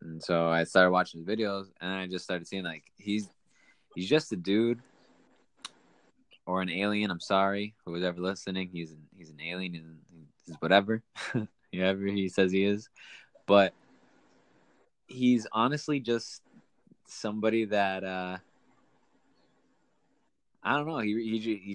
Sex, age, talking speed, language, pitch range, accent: male, 20-39, 145 wpm, English, 90-110 Hz, American